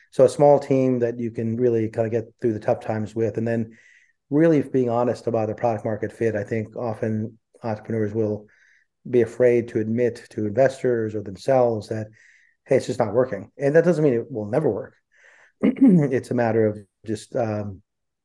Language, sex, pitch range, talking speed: English, male, 110-125 Hz, 195 wpm